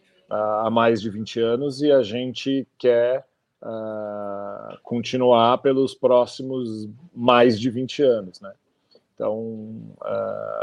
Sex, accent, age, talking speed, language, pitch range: male, Brazilian, 40-59, 120 wpm, Portuguese, 110-125 Hz